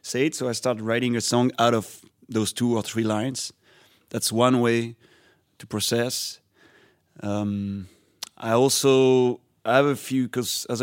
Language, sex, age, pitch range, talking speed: English, male, 30-49, 105-125 Hz, 155 wpm